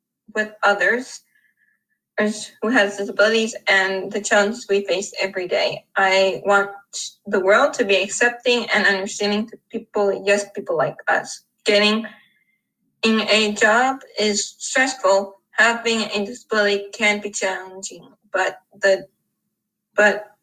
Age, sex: 20-39, female